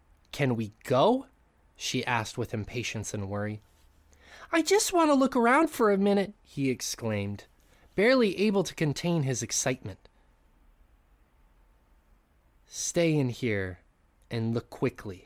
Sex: male